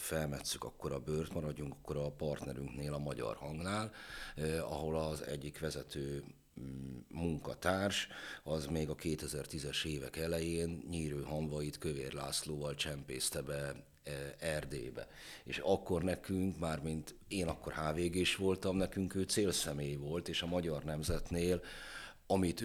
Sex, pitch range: male, 75-85 Hz